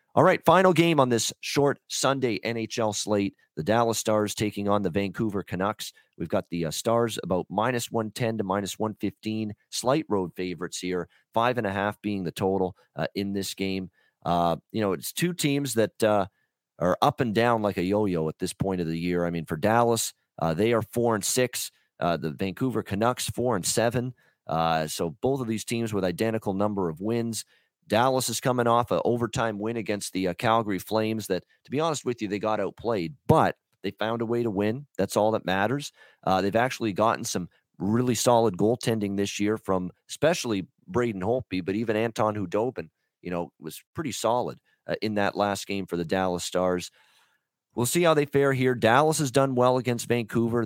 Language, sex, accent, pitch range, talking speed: English, male, American, 95-120 Hz, 200 wpm